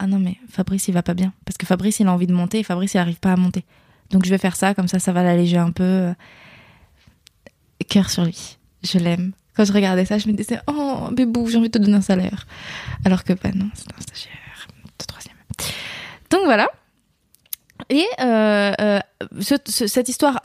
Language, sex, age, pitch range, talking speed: French, female, 20-39, 185-225 Hz, 220 wpm